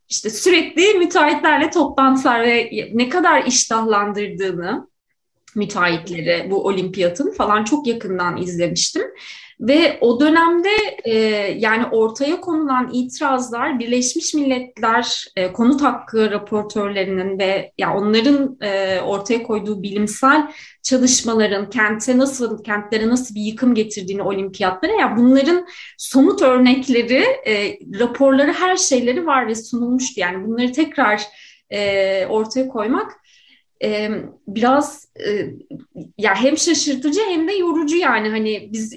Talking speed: 110 wpm